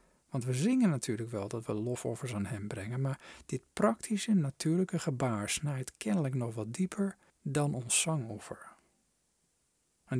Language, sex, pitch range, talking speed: Dutch, male, 120-165 Hz, 145 wpm